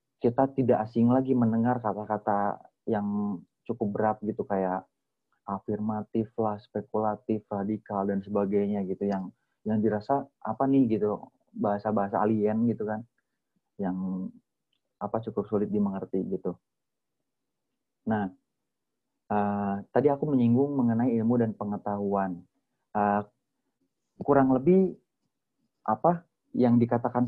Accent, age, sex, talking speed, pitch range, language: native, 30-49, male, 110 wpm, 105-130 Hz, Indonesian